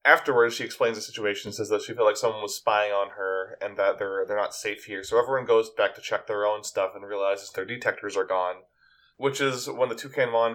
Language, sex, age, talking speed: English, male, 20-39, 245 wpm